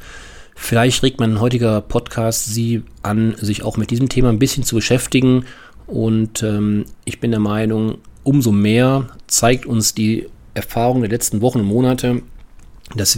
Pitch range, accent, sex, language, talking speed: 105-120 Hz, German, male, German, 155 wpm